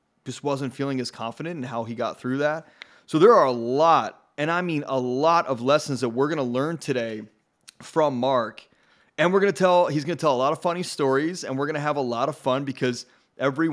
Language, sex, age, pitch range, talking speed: English, male, 30-49, 130-155 Hz, 245 wpm